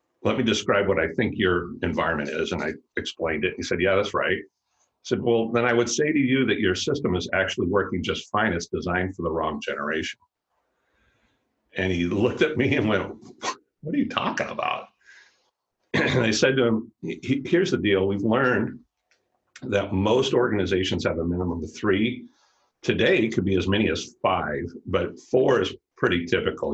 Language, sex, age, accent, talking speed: English, male, 50-69, American, 185 wpm